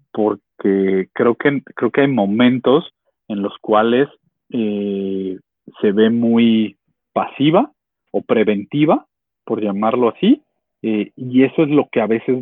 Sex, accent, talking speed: male, Mexican, 135 wpm